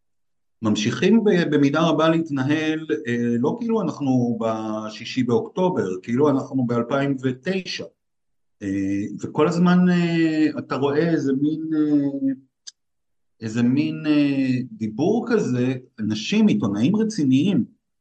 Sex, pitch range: male, 125-175 Hz